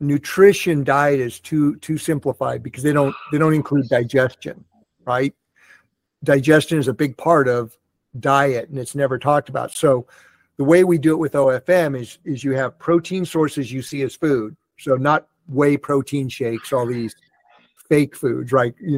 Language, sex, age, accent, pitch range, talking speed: English, male, 50-69, American, 130-155 Hz, 175 wpm